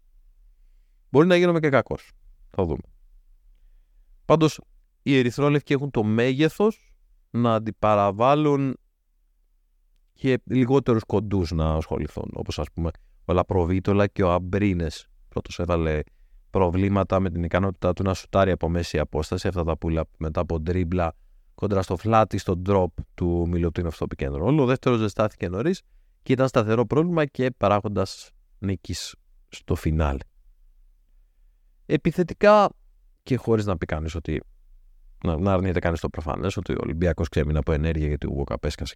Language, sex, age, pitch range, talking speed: Greek, male, 30-49, 80-105 Hz, 145 wpm